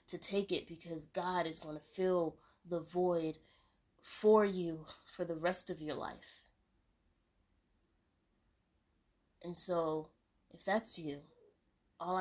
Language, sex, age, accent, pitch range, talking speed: English, female, 20-39, American, 150-180 Hz, 120 wpm